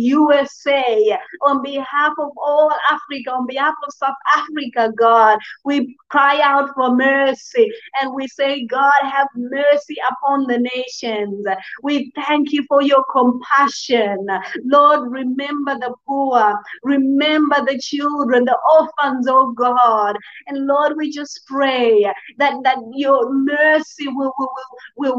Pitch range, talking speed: 250-290 Hz, 130 wpm